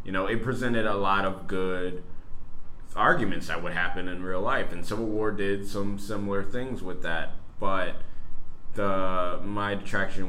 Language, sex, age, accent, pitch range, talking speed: English, male, 20-39, American, 85-100 Hz, 165 wpm